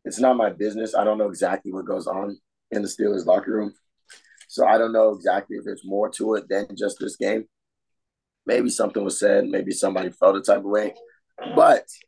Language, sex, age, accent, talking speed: English, male, 20-39, American, 210 wpm